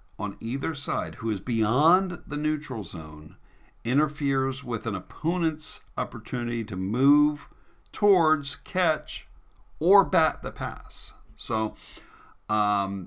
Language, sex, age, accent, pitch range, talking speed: English, male, 50-69, American, 100-130 Hz, 110 wpm